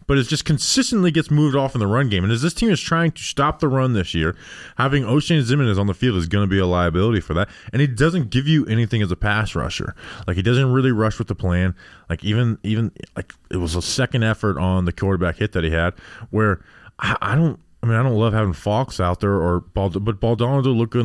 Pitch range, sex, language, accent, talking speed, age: 95-130 Hz, male, English, American, 265 wpm, 20-39